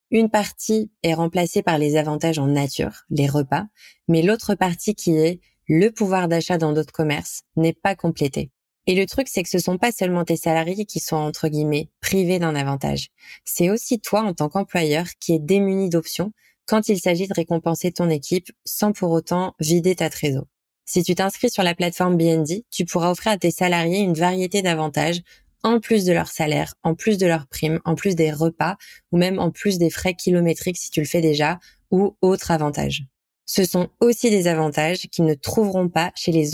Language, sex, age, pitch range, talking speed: French, female, 20-39, 160-195 Hz, 210 wpm